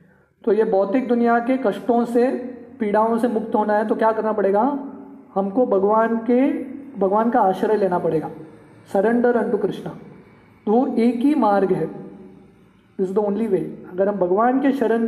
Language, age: English, 20-39